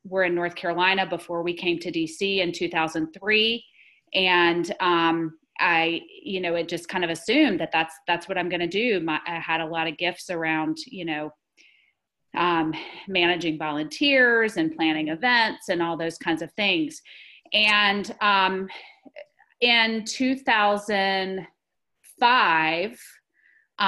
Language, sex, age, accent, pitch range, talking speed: English, female, 30-49, American, 170-220 Hz, 135 wpm